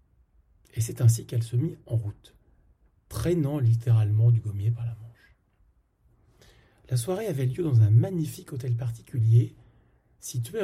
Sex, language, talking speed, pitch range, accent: male, French, 140 wpm, 110-135 Hz, French